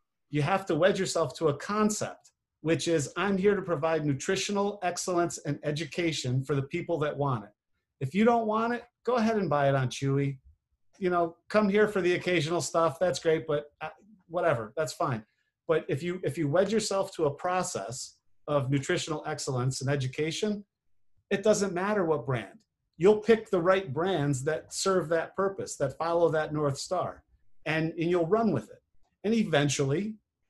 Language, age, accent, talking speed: English, 40-59, American, 180 wpm